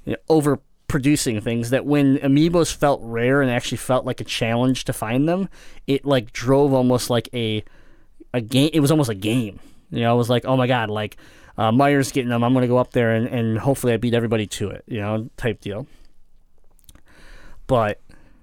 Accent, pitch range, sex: American, 120-155 Hz, male